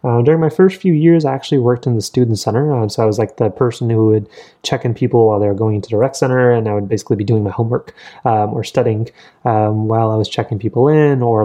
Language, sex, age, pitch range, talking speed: English, male, 20-39, 105-125 Hz, 275 wpm